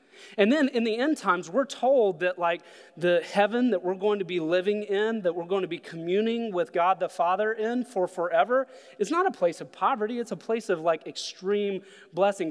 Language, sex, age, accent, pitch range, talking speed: English, male, 30-49, American, 160-200 Hz, 215 wpm